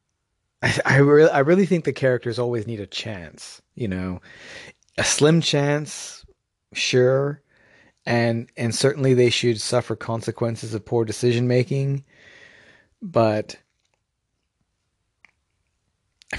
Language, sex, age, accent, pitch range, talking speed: English, male, 30-49, American, 105-130 Hz, 115 wpm